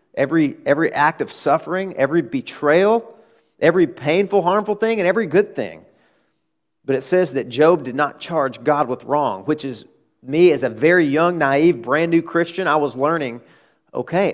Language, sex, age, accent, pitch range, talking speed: English, male, 40-59, American, 125-165 Hz, 170 wpm